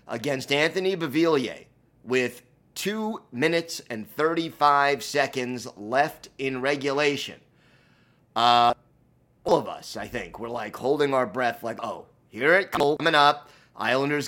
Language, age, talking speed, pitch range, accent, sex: English, 30-49, 130 wpm, 125-160 Hz, American, male